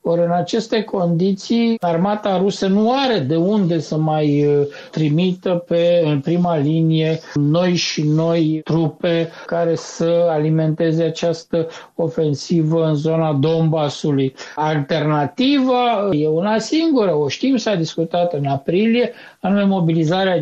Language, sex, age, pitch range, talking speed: Romanian, male, 60-79, 160-195 Hz, 125 wpm